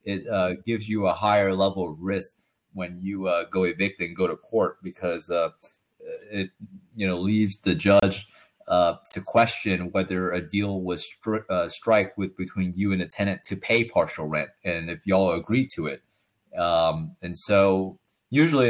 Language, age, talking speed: English, 20-39, 175 wpm